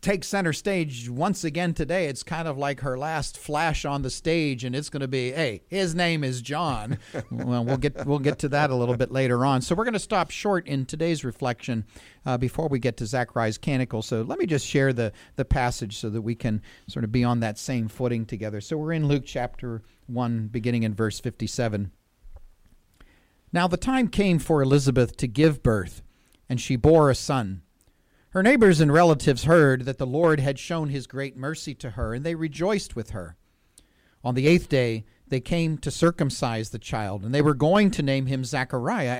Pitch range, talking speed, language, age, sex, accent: 120-155 Hz, 210 wpm, English, 40-59, male, American